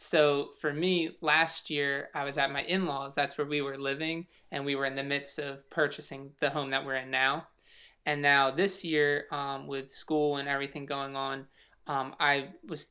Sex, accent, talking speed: male, American, 200 wpm